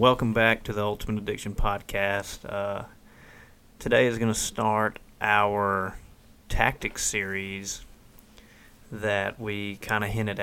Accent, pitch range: American, 100-110 Hz